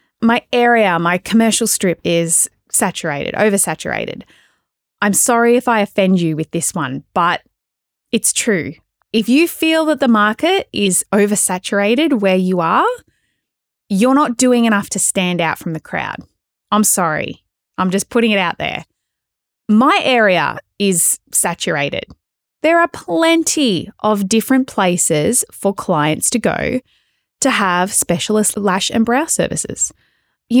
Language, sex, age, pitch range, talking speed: English, female, 20-39, 185-235 Hz, 140 wpm